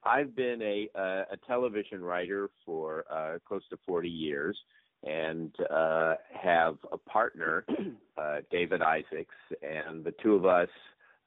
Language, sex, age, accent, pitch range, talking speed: English, male, 50-69, American, 85-130 Hz, 135 wpm